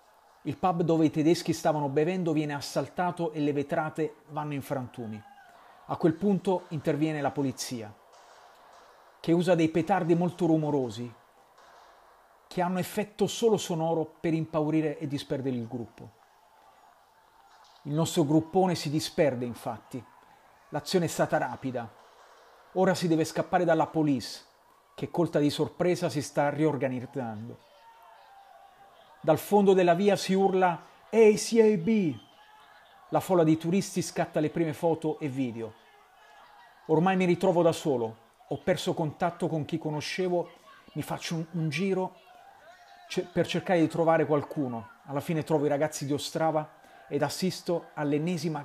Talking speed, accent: 135 wpm, native